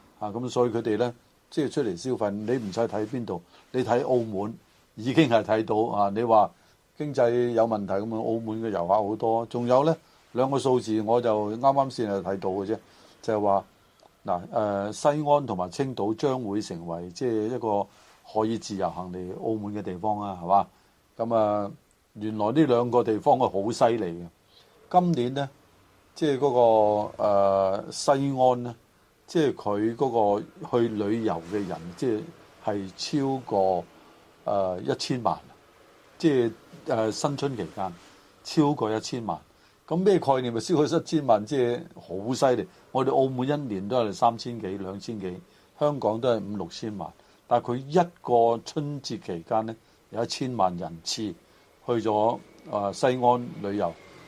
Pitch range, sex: 100-130 Hz, male